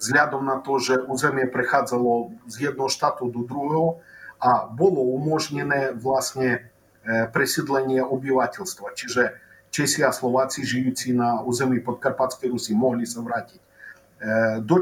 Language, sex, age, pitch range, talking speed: Slovak, male, 50-69, 120-150 Hz, 120 wpm